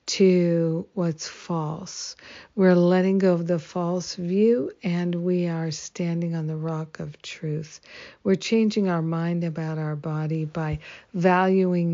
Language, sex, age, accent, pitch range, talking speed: English, female, 60-79, American, 160-185 Hz, 140 wpm